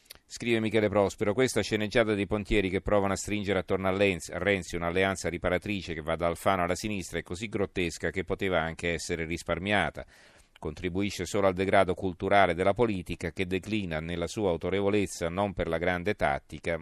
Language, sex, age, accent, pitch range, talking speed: Italian, male, 40-59, native, 85-100 Hz, 170 wpm